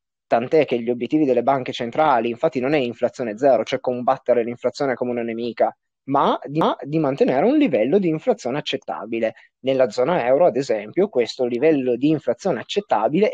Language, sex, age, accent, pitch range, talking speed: Italian, male, 20-39, native, 125-165 Hz, 165 wpm